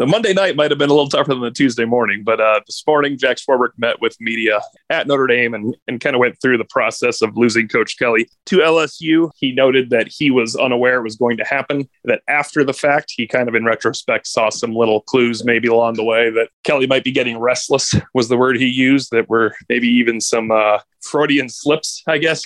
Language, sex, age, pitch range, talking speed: English, male, 30-49, 115-150 Hz, 235 wpm